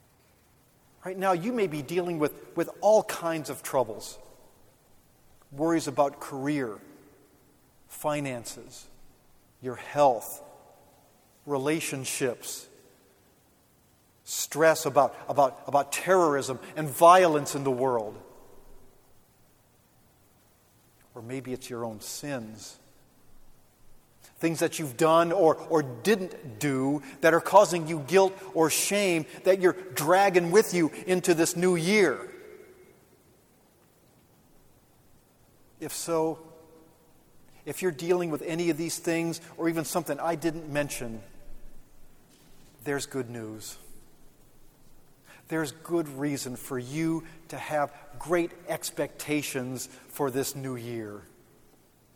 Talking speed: 105 wpm